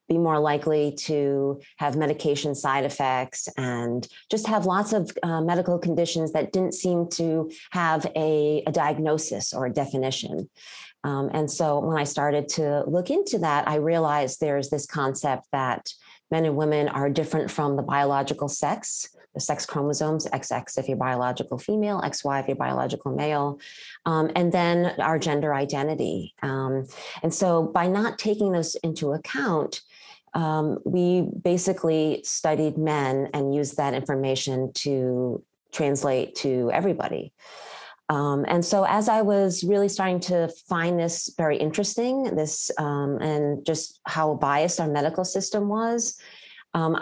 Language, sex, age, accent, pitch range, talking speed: English, female, 30-49, American, 145-170 Hz, 150 wpm